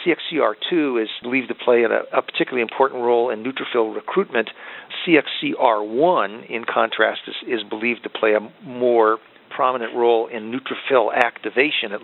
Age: 50-69